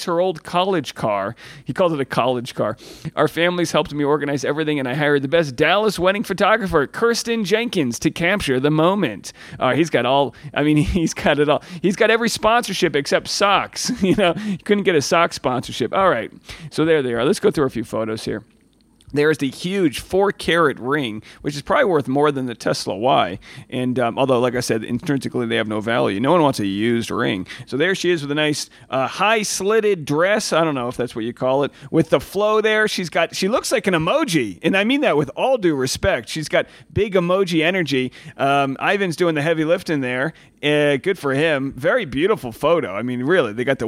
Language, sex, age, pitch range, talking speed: English, male, 40-59, 140-190 Hz, 220 wpm